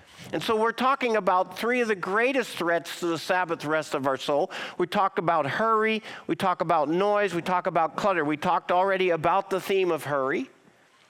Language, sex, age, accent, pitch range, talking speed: English, male, 50-69, American, 160-205 Hz, 200 wpm